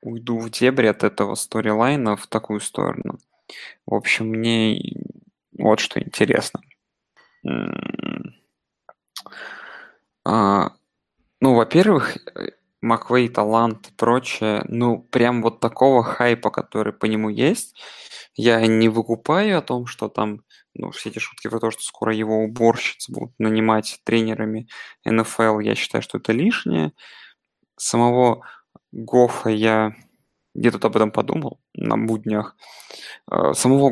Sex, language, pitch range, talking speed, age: male, Russian, 110-125 Hz, 115 wpm, 20-39